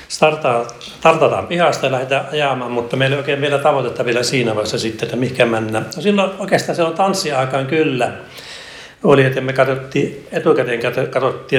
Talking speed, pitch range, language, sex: 165 wpm, 120-140 Hz, Finnish, male